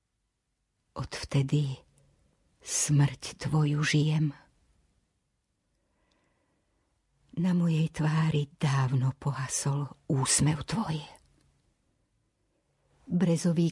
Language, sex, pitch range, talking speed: Slovak, female, 140-165 Hz, 50 wpm